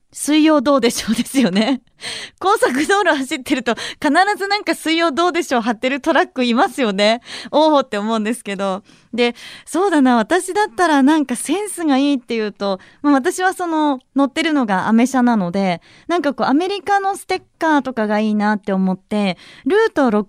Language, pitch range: Japanese, 220-310 Hz